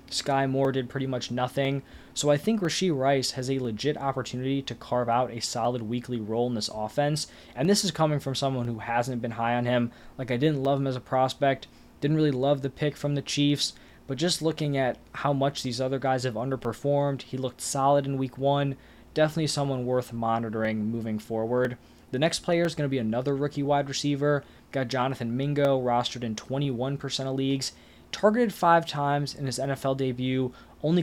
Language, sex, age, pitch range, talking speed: English, male, 20-39, 125-145 Hz, 200 wpm